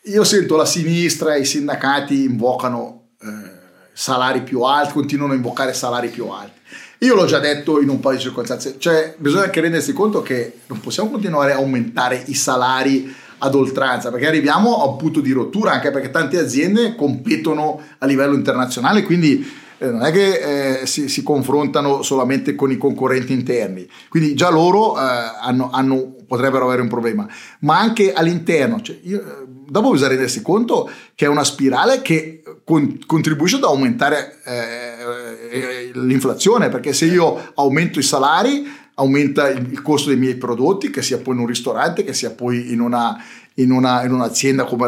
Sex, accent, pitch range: male, native, 125-160 Hz